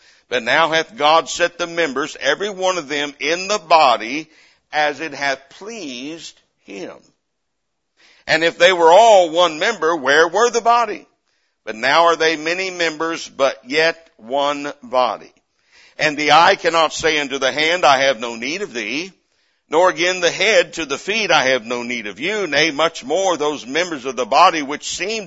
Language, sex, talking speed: English, male, 185 wpm